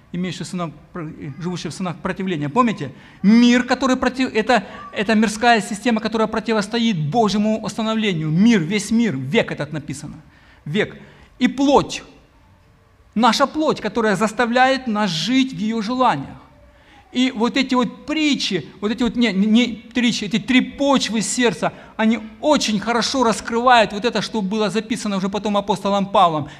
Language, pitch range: Ukrainian, 170-225 Hz